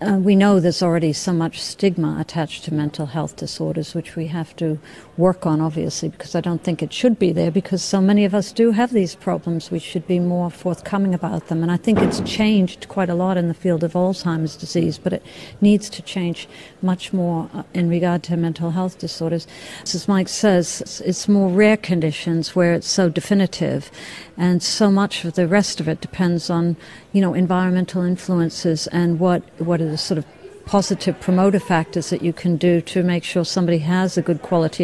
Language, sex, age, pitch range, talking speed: English, female, 60-79, 170-190 Hz, 200 wpm